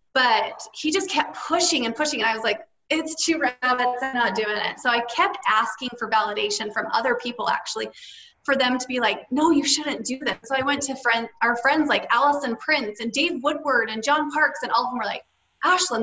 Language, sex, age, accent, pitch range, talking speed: English, female, 20-39, American, 235-305 Hz, 230 wpm